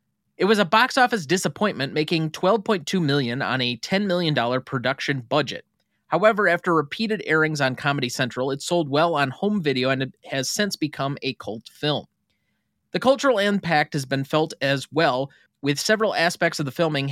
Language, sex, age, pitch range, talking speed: English, male, 30-49, 130-175 Hz, 170 wpm